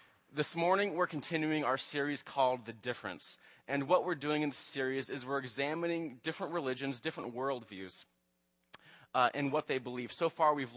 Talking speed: 165 wpm